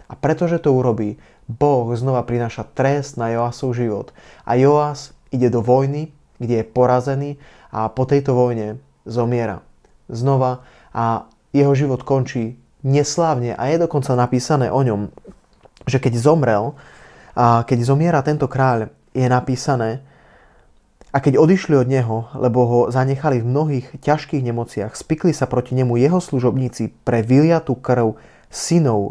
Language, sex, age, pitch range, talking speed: Slovak, male, 20-39, 115-135 Hz, 140 wpm